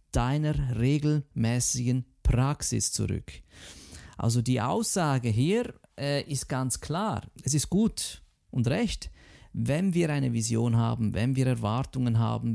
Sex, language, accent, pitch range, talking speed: male, German, German, 110-150 Hz, 125 wpm